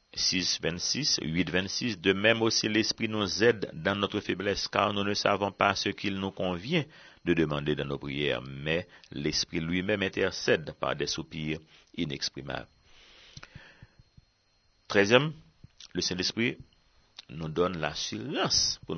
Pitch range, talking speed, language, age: 80-95 Hz, 135 wpm, English, 60-79